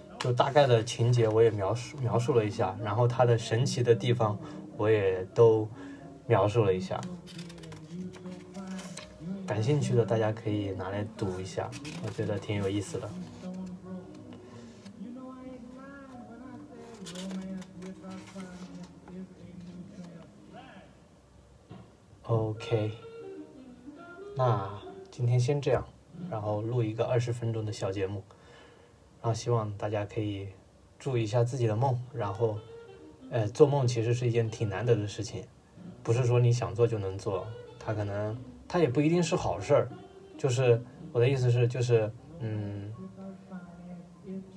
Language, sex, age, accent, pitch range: Chinese, male, 20-39, native, 110-155 Hz